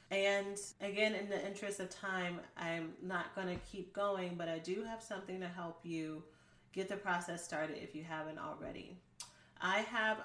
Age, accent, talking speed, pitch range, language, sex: 30-49, American, 180 wpm, 165-195 Hz, English, female